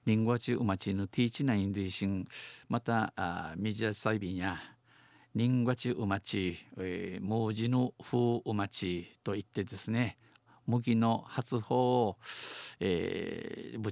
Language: Japanese